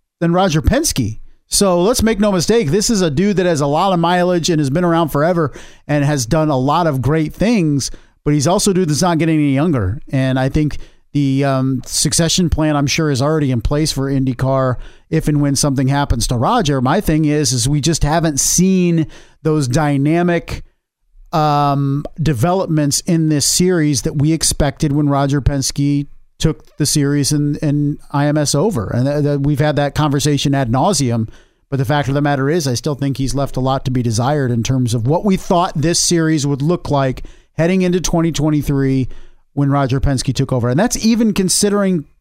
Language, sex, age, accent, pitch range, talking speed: English, male, 40-59, American, 135-165 Hz, 200 wpm